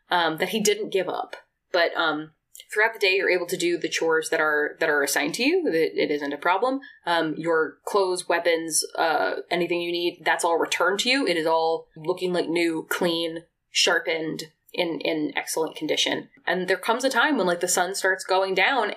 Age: 20-39